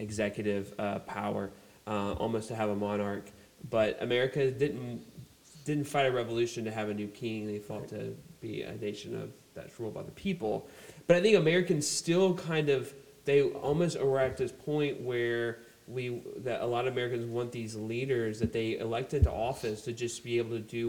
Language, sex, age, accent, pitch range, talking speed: English, male, 30-49, American, 105-130 Hz, 190 wpm